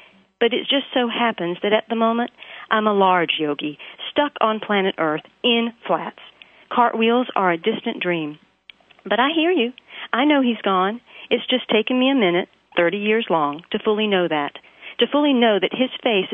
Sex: female